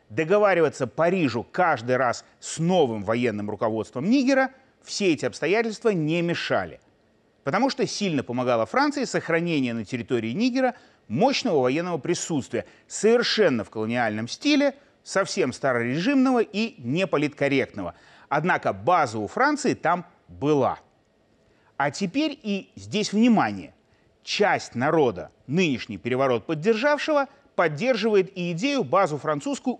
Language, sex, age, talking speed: Russian, male, 30-49, 110 wpm